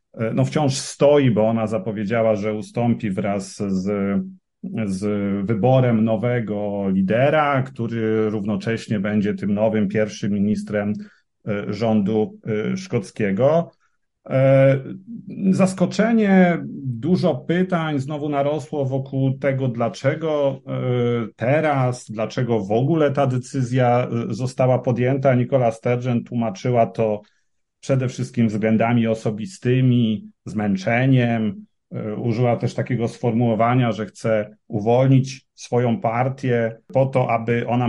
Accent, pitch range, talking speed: native, 110-130 Hz, 95 wpm